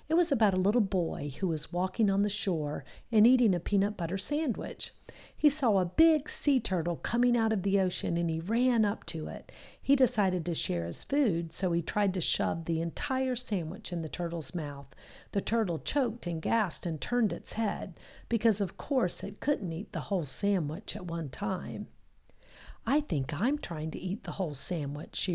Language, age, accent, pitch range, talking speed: English, 50-69, American, 165-225 Hz, 200 wpm